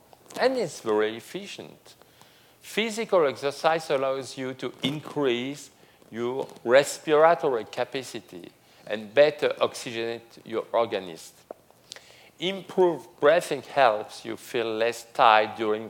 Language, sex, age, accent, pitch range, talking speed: English, male, 50-69, French, 115-165 Hz, 100 wpm